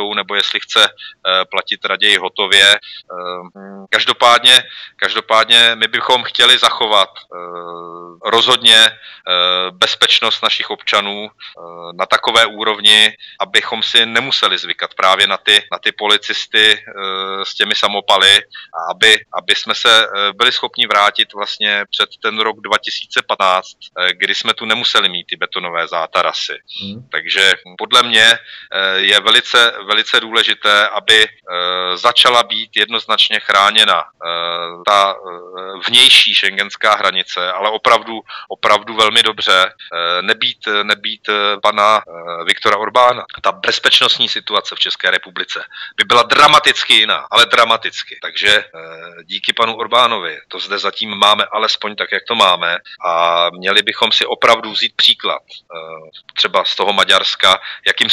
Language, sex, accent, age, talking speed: Czech, male, native, 30-49, 130 wpm